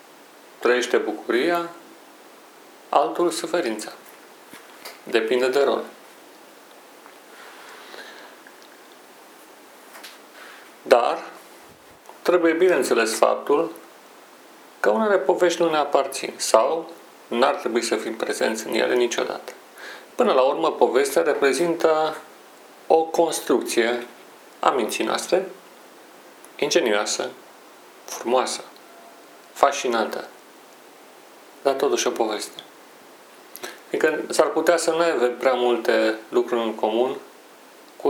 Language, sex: Romanian, male